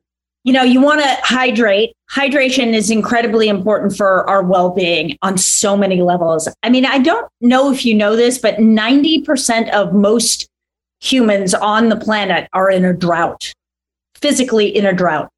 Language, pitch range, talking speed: English, 195-255 Hz, 165 wpm